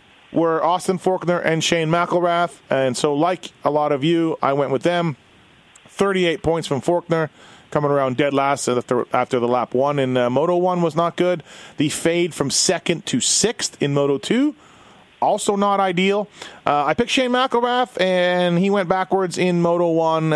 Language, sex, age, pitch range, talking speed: English, male, 30-49, 140-180 Hz, 175 wpm